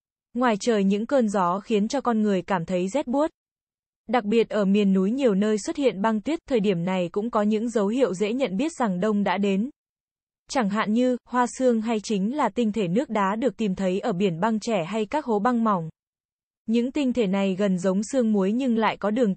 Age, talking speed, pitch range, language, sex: 20-39, 230 wpm, 200-245 Hz, Vietnamese, female